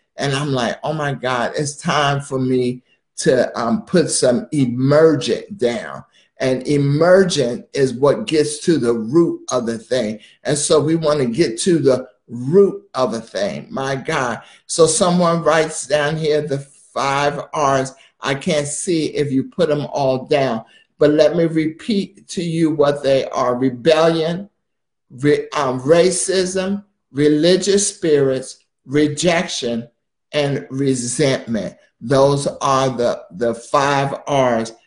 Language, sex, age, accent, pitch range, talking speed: English, male, 50-69, American, 130-160 Hz, 140 wpm